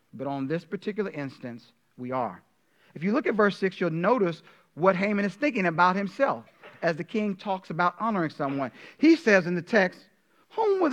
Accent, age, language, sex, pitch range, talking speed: American, 40-59, English, male, 135-195 Hz, 190 wpm